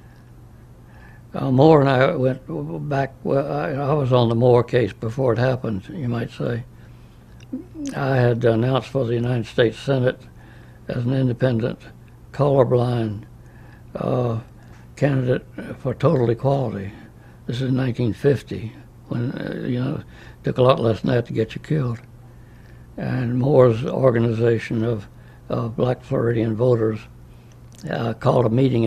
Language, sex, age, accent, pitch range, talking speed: English, male, 60-79, American, 115-130 Hz, 140 wpm